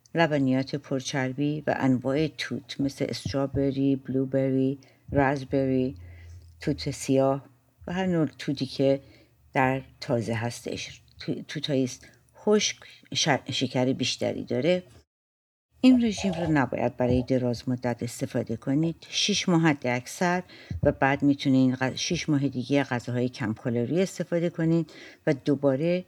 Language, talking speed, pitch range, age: English, 115 wpm, 125-155 Hz, 60-79